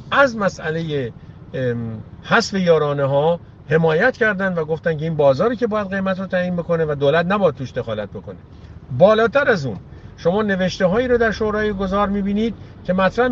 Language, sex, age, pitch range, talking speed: English, male, 50-69, 140-215 Hz, 165 wpm